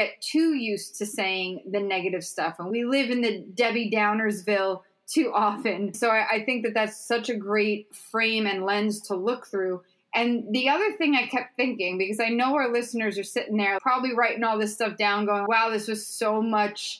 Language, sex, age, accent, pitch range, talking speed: English, female, 20-39, American, 205-245 Hz, 205 wpm